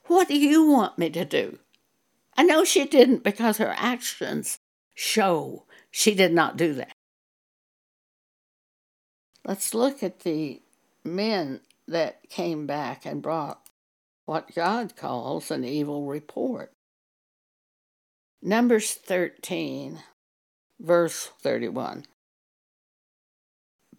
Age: 60-79